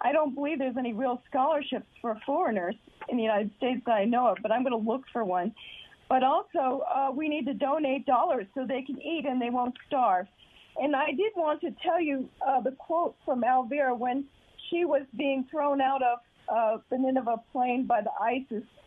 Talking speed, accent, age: 205 wpm, American, 50-69